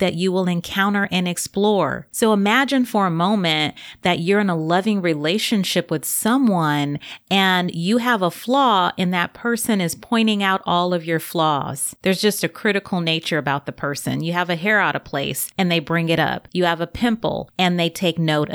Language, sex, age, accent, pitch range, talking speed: English, female, 30-49, American, 165-215 Hz, 200 wpm